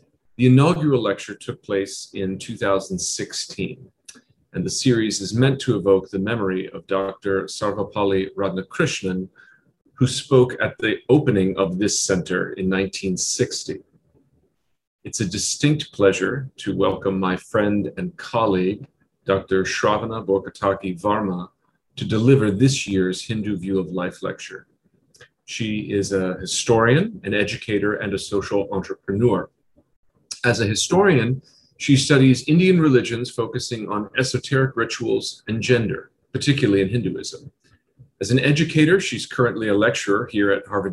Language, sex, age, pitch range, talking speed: English, male, 40-59, 100-130 Hz, 130 wpm